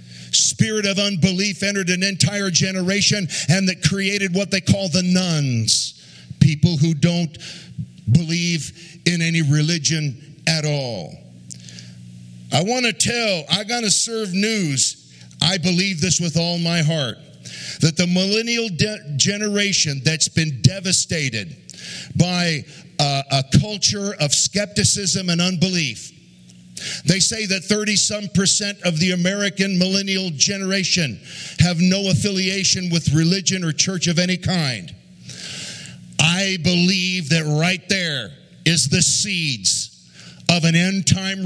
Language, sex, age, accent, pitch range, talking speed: English, male, 50-69, American, 150-195 Hz, 125 wpm